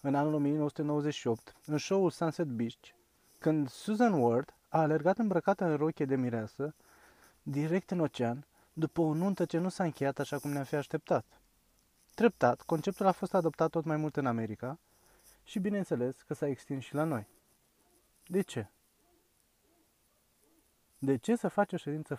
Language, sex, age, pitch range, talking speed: Romanian, male, 20-39, 125-170 Hz, 155 wpm